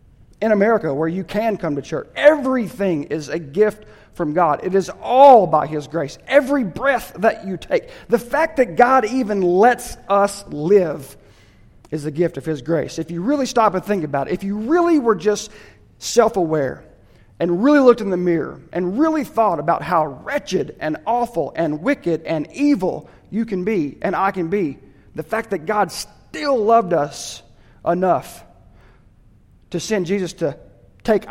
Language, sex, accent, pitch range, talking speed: English, male, American, 150-220 Hz, 175 wpm